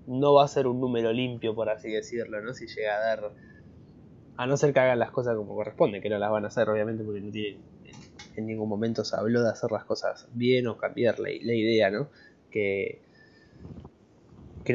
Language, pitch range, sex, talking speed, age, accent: Spanish, 110-125 Hz, male, 210 wpm, 20-39, Argentinian